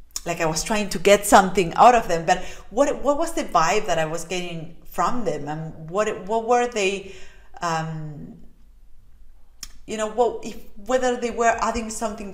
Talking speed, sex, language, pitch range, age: 180 wpm, female, English, 170-215 Hz, 30-49